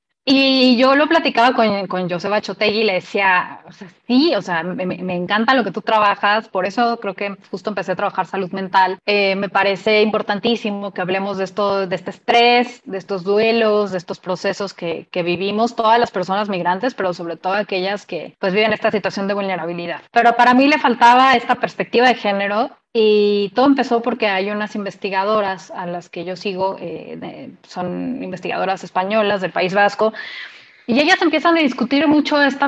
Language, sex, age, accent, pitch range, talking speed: Spanish, female, 20-39, Mexican, 195-245 Hz, 190 wpm